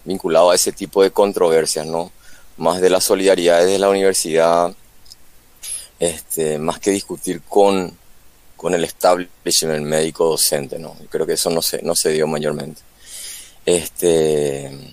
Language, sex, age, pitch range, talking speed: Spanish, male, 30-49, 85-105 Hz, 150 wpm